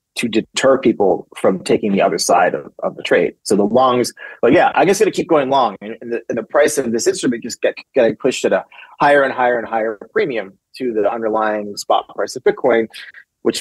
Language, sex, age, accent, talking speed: English, male, 30-49, American, 235 wpm